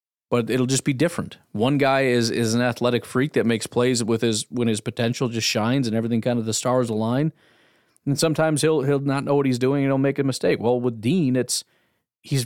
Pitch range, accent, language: 115-145 Hz, American, English